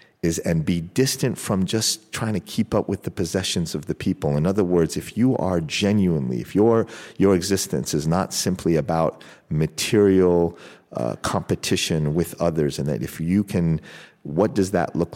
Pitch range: 75-90 Hz